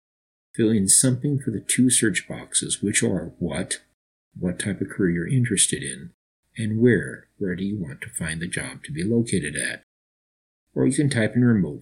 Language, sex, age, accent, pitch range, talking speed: English, male, 50-69, American, 90-125 Hz, 195 wpm